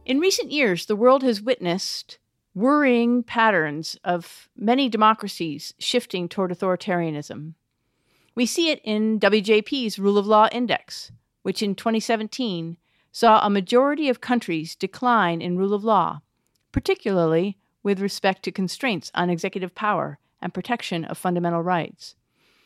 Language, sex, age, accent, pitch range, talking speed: English, female, 50-69, American, 185-245 Hz, 130 wpm